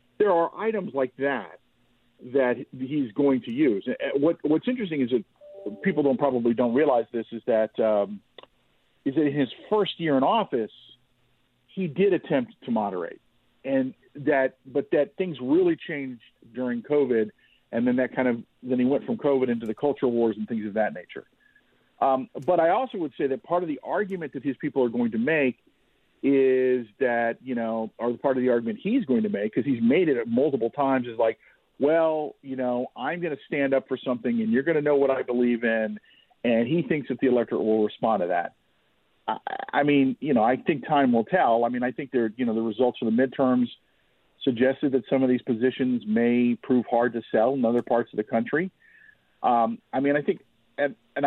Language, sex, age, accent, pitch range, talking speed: English, male, 50-69, American, 120-155 Hz, 210 wpm